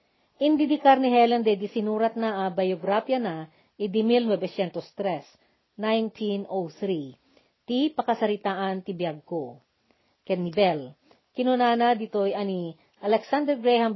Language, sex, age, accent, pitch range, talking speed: Filipino, female, 40-59, native, 185-245 Hz, 105 wpm